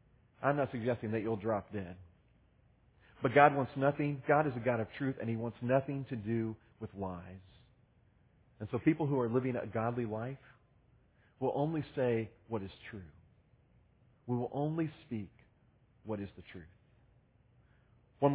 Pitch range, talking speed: 115-145 Hz, 160 wpm